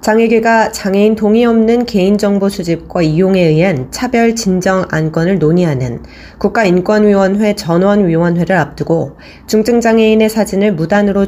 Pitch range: 165-215 Hz